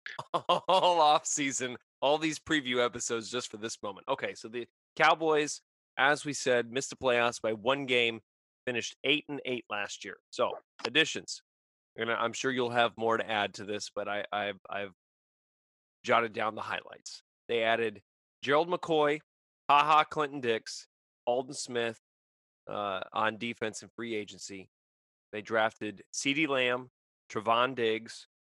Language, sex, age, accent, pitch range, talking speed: English, male, 20-39, American, 100-120 Hz, 150 wpm